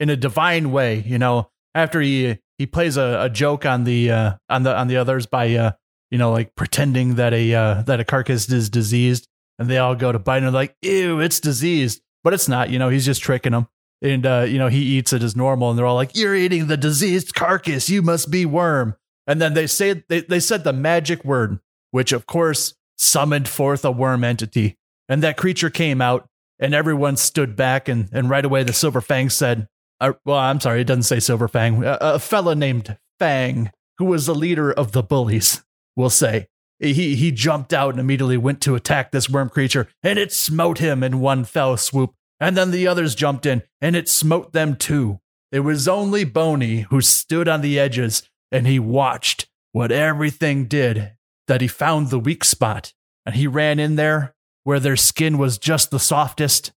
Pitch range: 125-155 Hz